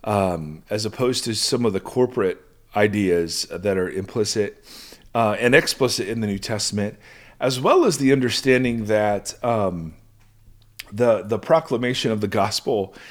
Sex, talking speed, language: male, 145 wpm, English